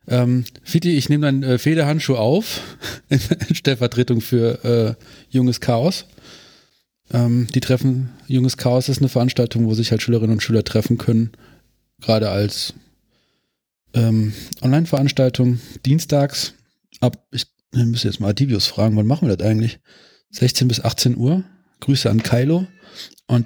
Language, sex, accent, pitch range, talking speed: German, male, German, 115-140 Hz, 145 wpm